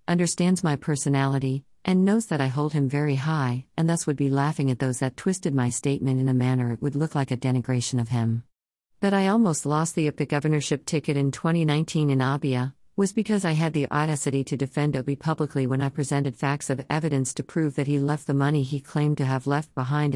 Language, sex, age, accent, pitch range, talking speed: English, female, 50-69, American, 130-155 Hz, 220 wpm